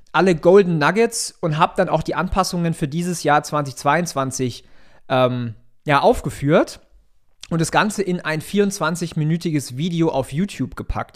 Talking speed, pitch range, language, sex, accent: 140 wpm, 145-180 Hz, German, male, German